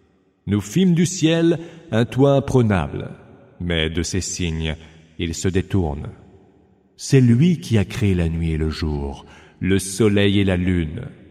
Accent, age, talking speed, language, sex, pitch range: French, 40-59, 155 wpm, English, male, 85-130 Hz